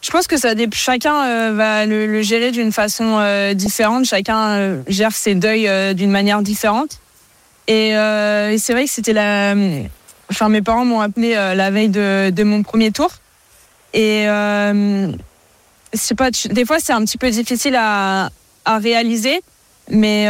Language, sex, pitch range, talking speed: French, female, 205-230 Hz, 180 wpm